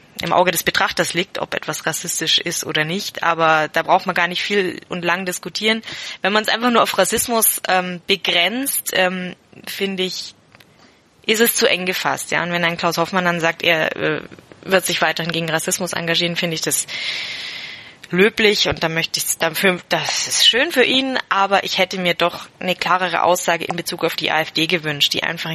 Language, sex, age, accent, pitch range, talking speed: German, female, 20-39, German, 165-185 Hz, 200 wpm